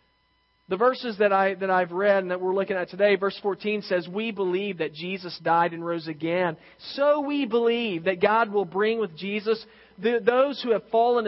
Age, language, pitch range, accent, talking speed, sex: 40-59, English, 185-245 Hz, American, 200 wpm, male